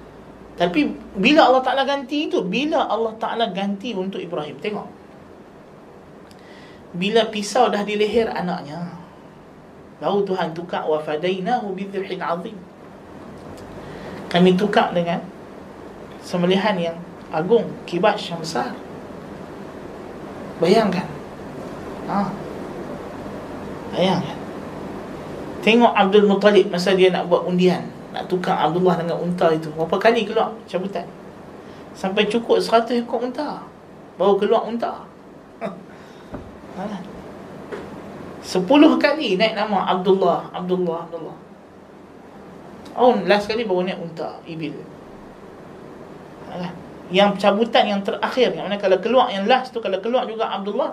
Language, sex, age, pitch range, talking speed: Malay, male, 30-49, 180-230 Hz, 110 wpm